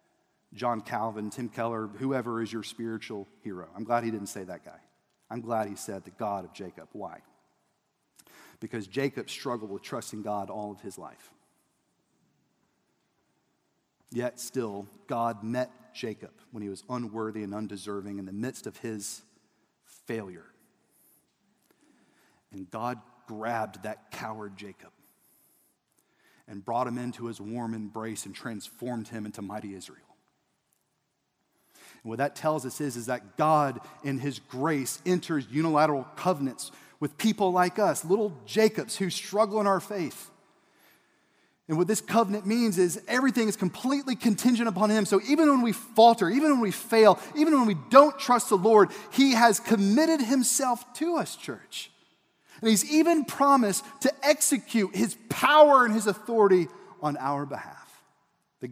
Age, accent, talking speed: 40-59, American, 150 wpm